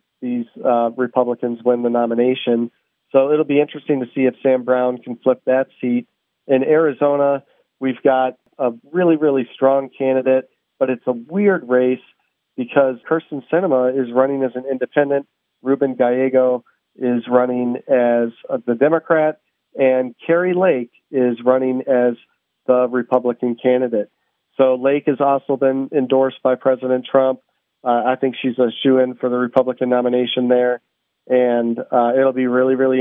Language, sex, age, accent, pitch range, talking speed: English, male, 40-59, American, 125-140 Hz, 155 wpm